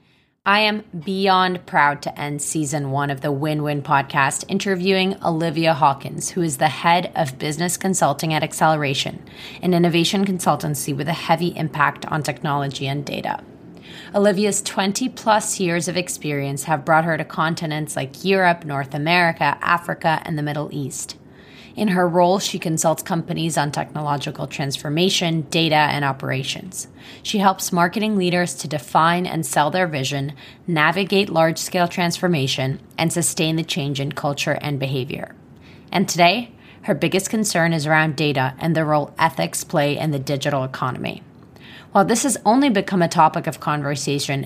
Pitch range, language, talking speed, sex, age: 145-180 Hz, English, 155 wpm, female, 20-39